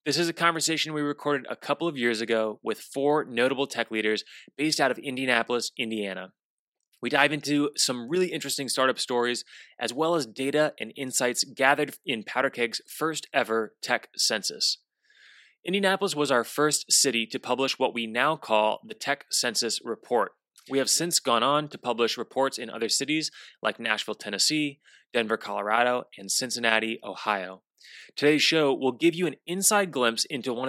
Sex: male